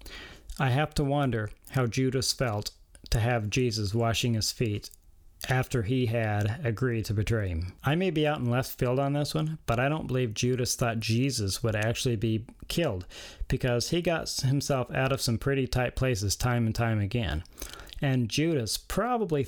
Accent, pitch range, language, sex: American, 105-130 Hz, English, male